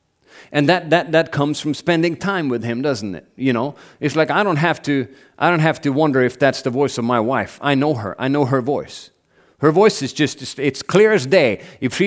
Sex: male